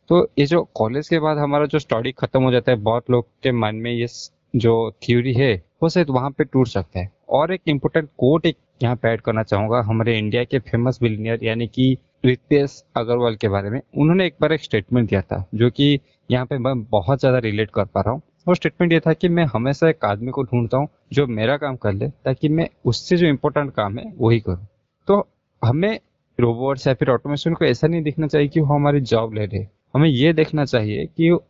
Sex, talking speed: male, 220 wpm